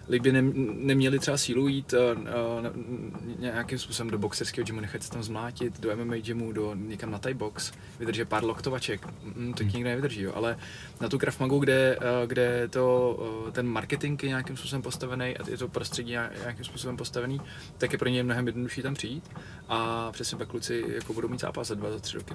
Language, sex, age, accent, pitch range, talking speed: Czech, male, 20-39, native, 110-130 Hz, 205 wpm